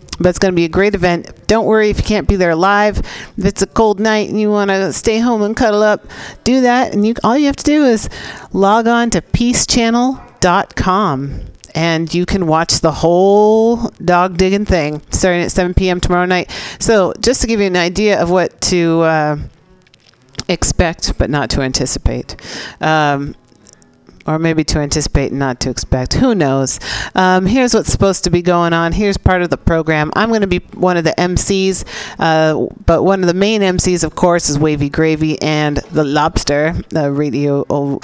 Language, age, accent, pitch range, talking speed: English, 40-59, American, 155-200 Hz, 195 wpm